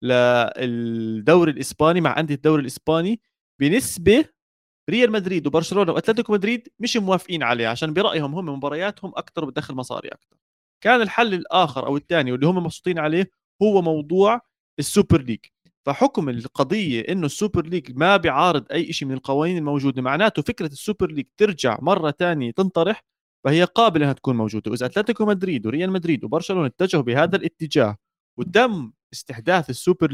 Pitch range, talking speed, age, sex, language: 125-180 Hz, 145 wpm, 30-49, male, Arabic